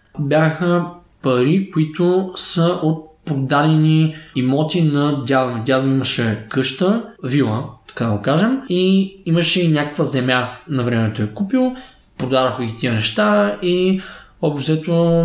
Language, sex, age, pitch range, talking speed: Bulgarian, male, 20-39, 130-175 Hz, 125 wpm